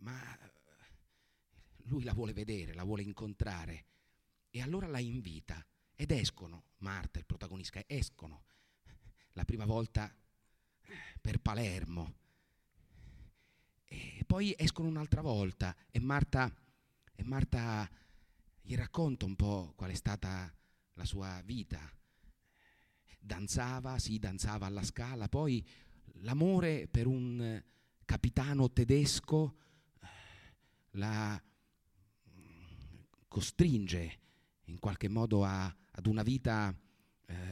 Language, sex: Italian, male